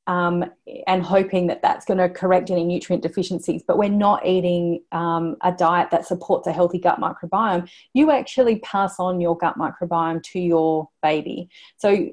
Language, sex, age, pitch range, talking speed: English, female, 30-49, 170-195 Hz, 175 wpm